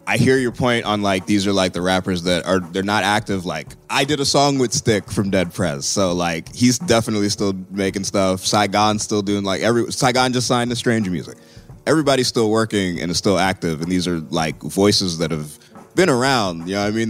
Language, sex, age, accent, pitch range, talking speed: English, male, 20-39, American, 95-125 Hz, 230 wpm